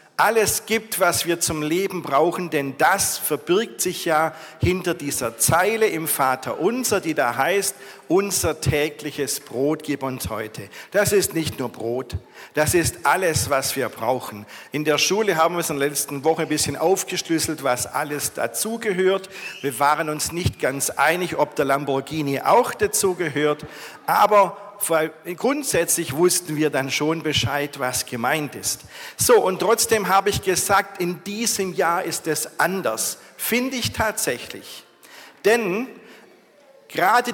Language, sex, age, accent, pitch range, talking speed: German, male, 50-69, German, 140-195 Hz, 150 wpm